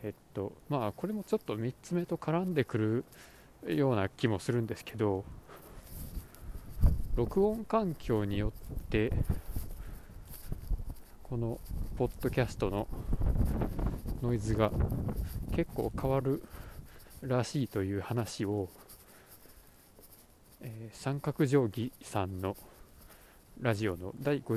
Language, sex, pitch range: Japanese, male, 100-125 Hz